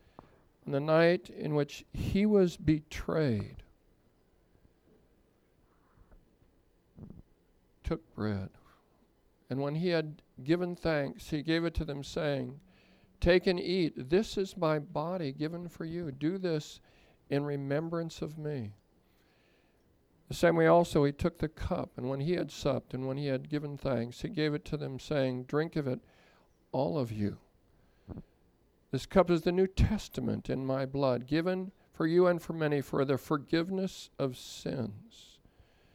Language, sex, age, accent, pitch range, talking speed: English, male, 60-79, American, 130-165 Hz, 150 wpm